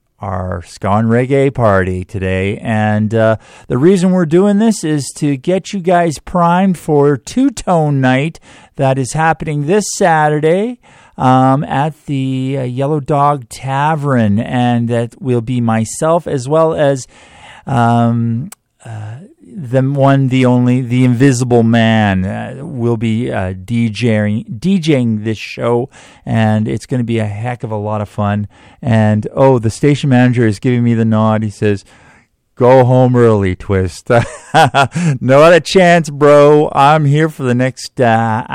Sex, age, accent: male, 50-69, American